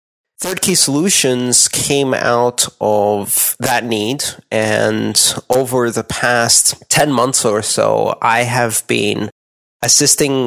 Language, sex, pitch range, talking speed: English, male, 110-130 Hz, 115 wpm